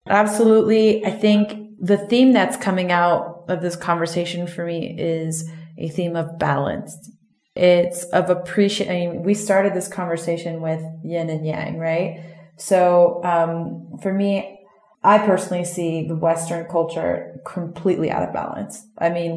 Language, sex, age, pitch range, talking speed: English, female, 30-49, 170-195 Hz, 145 wpm